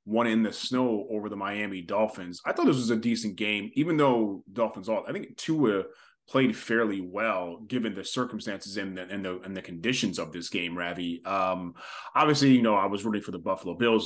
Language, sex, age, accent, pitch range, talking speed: English, male, 30-49, American, 100-120 Hz, 215 wpm